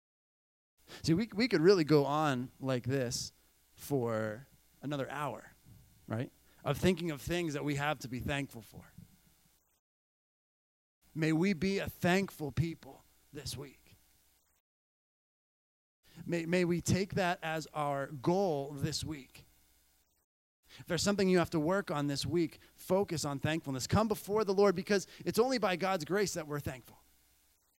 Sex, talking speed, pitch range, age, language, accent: male, 145 wpm, 135-195 Hz, 30-49, English, American